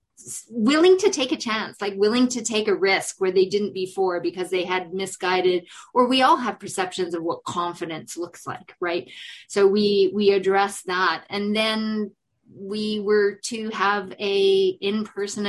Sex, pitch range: female, 185-220 Hz